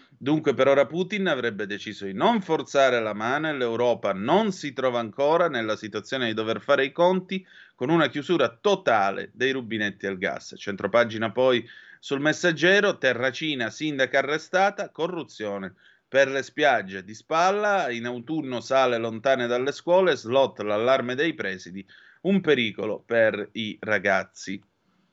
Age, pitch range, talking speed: 30-49, 115-155 Hz, 145 wpm